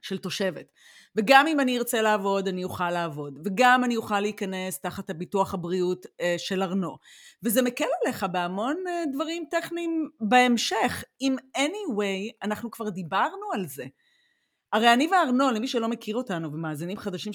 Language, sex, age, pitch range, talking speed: Hebrew, female, 30-49, 190-260 Hz, 150 wpm